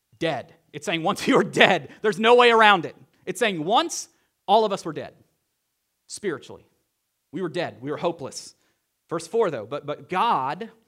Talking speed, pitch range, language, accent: 175 wpm, 115-165 Hz, English, American